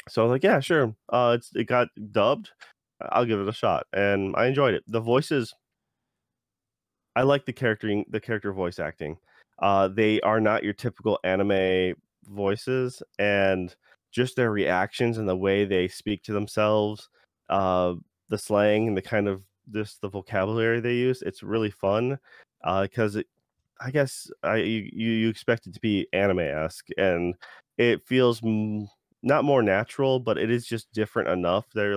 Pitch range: 95-115 Hz